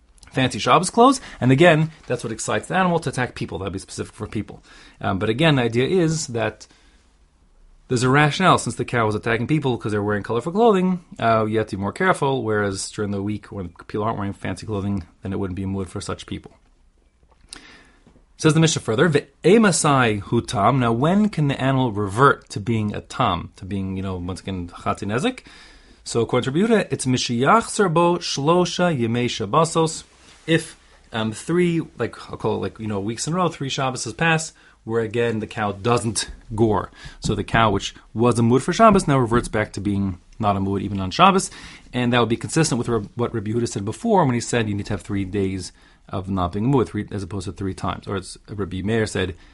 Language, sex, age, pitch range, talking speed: English, male, 30-49, 100-140 Hz, 220 wpm